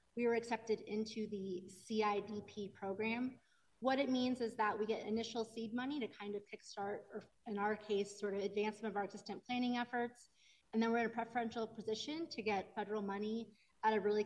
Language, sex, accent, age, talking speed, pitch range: English, female, American, 30-49, 200 wpm, 200-220 Hz